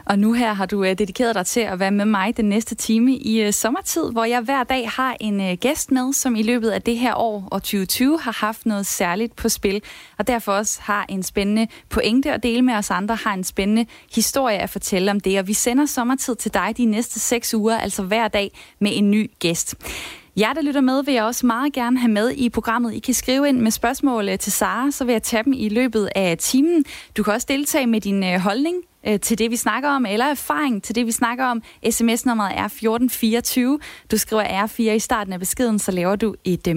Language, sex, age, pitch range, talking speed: Danish, female, 20-39, 210-255 Hz, 230 wpm